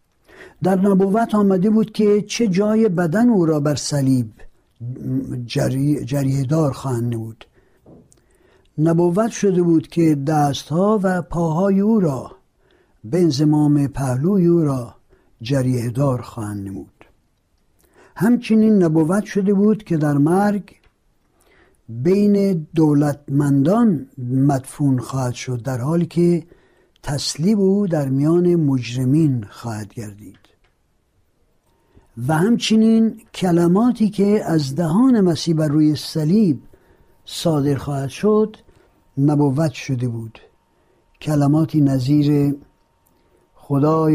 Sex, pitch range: male, 135-180 Hz